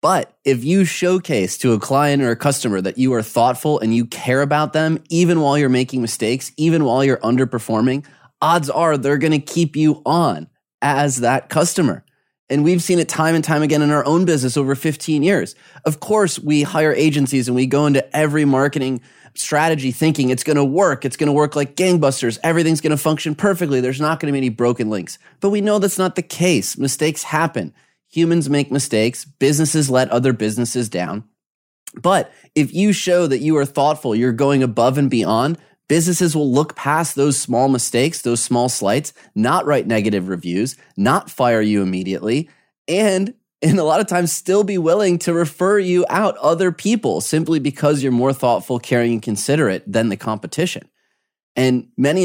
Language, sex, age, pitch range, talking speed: English, male, 30-49, 125-160 Hz, 190 wpm